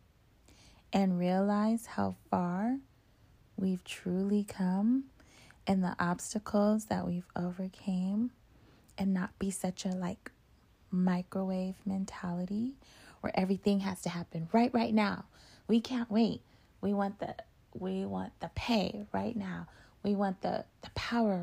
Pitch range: 185-225 Hz